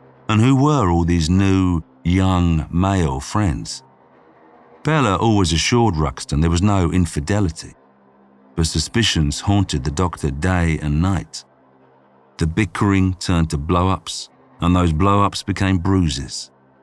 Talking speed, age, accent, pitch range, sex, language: 125 wpm, 50-69, British, 75-100 Hz, male, English